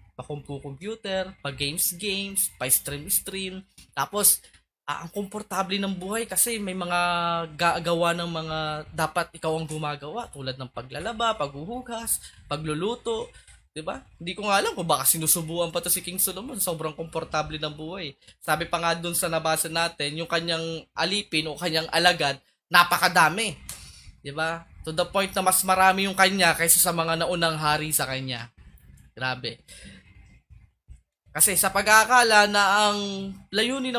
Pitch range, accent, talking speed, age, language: 150-195 Hz, native, 150 wpm, 20-39, Filipino